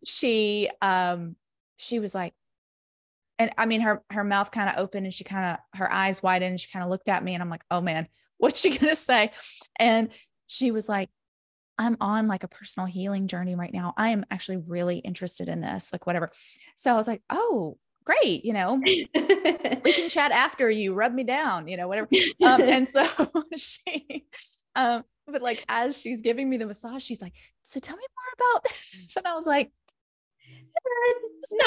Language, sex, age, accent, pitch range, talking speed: English, female, 20-39, American, 185-255 Hz, 195 wpm